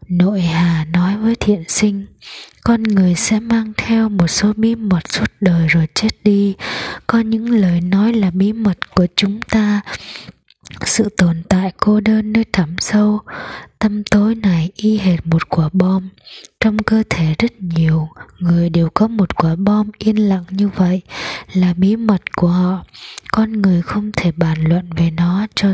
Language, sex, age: Japanese, female, 20-39